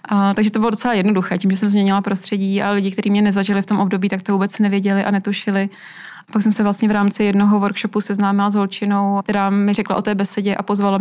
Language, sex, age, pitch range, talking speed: Czech, female, 20-39, 195-210 Hz, 245 wpm